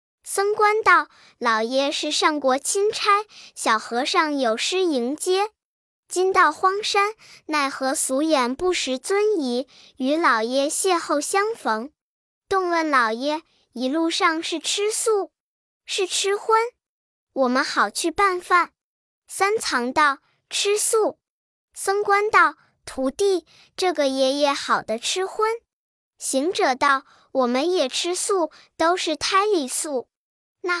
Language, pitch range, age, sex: Chinese, 270-385 Hz, 10-29, male